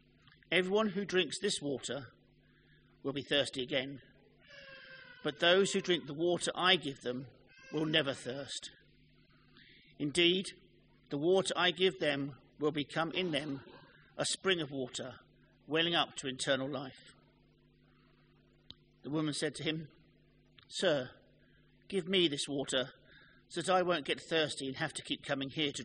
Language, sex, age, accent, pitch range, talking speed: English, male, 50-69, British, 135-180 Hz, 145 wpm